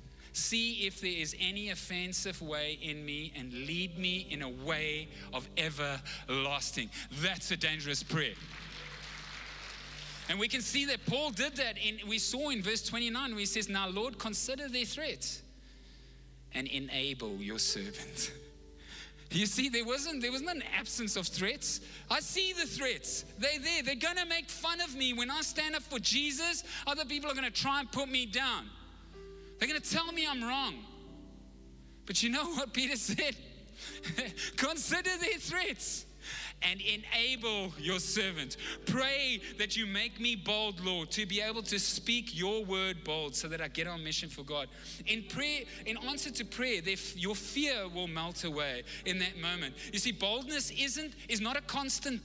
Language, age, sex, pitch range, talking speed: English, 30-49, male, 170-260 Hz, 170 wpm